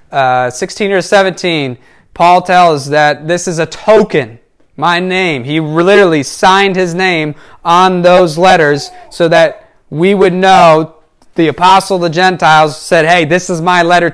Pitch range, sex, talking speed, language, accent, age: 165-205 Hz, male, 155 wpm, English, American, 30-49